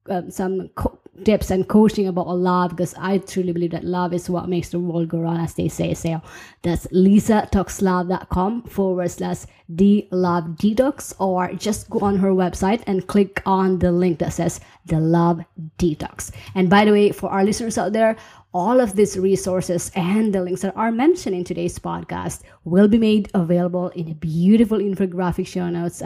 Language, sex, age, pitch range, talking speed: English, female, 20-39, 175-205 Hz, 185 wpm